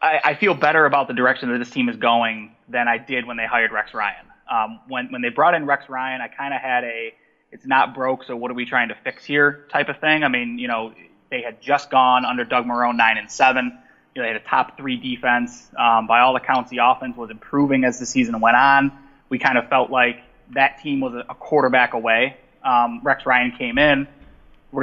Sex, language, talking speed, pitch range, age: male, English, 235 wpm, 120-150 Hz, 20-39